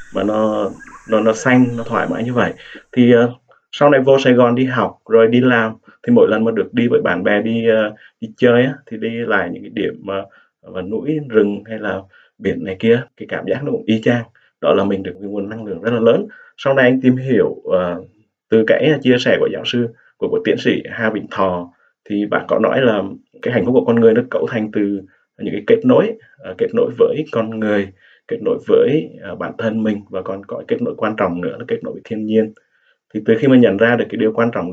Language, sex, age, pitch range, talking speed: Vietnamese, male, 20-39, 105-125 Hz, 250 wpm